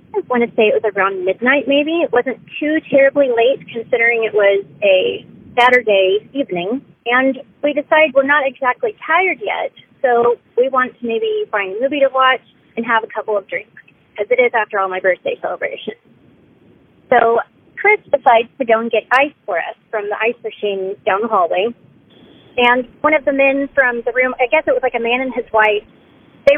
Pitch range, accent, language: 215-290 Hz, American, English